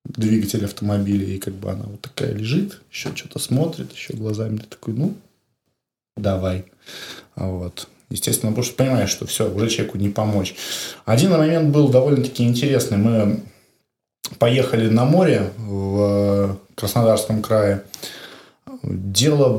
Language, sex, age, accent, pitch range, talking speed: Russian, male, 20-39, native, 105-140 Hz, 125 wpm